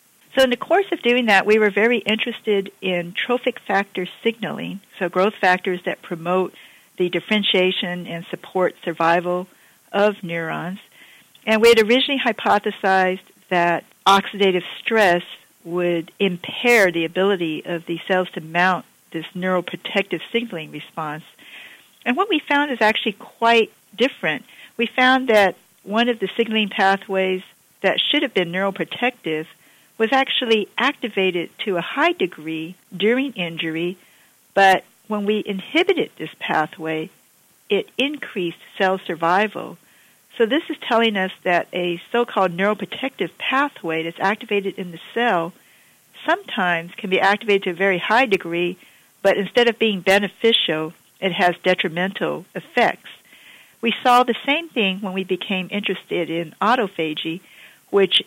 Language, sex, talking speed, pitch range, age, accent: English, female, 135 wpm, 180-230 Hz, 50-69, American